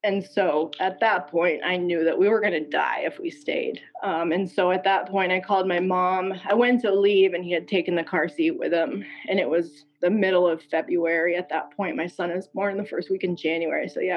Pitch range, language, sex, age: 170-205 Hz, English, female, 20-39